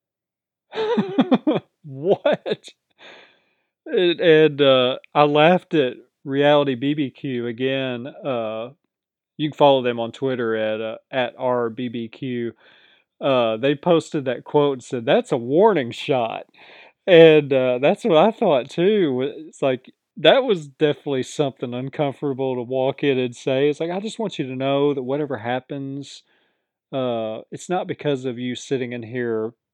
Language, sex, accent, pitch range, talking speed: English, male, American, 125-155 Hz, 140 wpm